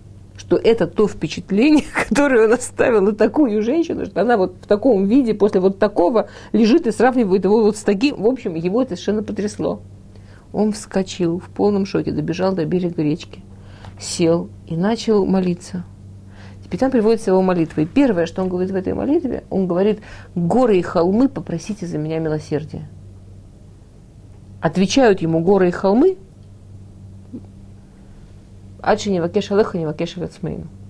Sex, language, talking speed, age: female, Russian, 140 wpm, 50-69